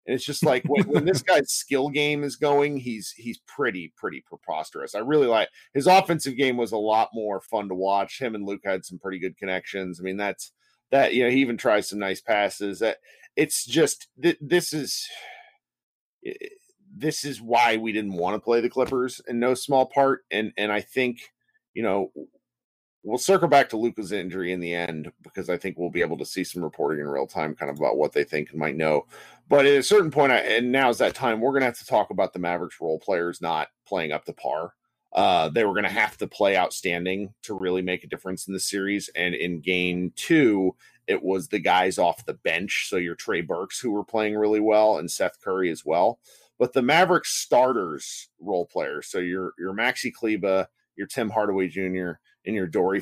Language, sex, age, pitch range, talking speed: English, male, 40-59, 95-145 Hz, 215 wpm